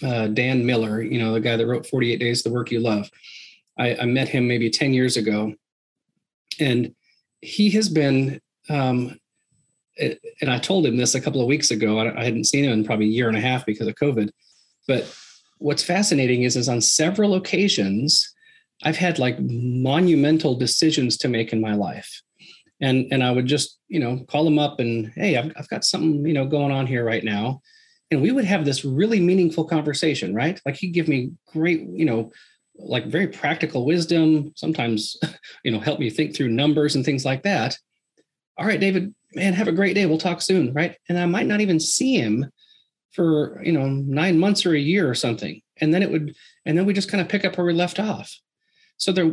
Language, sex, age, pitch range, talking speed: English, male, 40-59, 125-175 Hz, 215 wpm